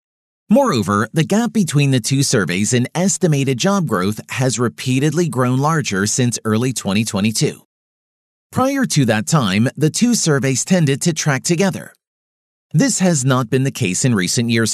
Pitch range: 120-170 Hz